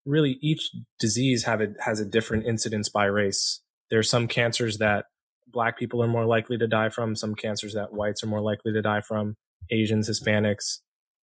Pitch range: 105-125 Hz